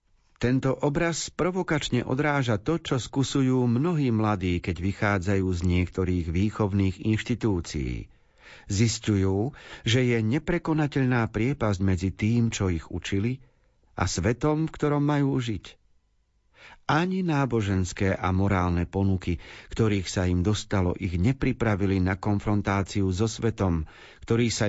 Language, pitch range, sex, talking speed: Slovak, 95-130 Hz, male, 115 wpm